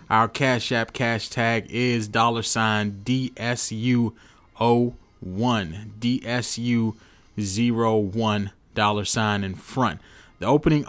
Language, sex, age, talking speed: English, male, 20-39, 75 wpm